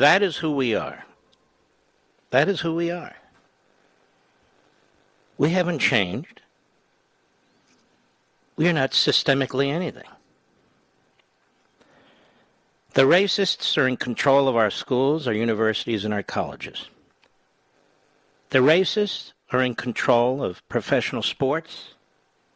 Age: 60-79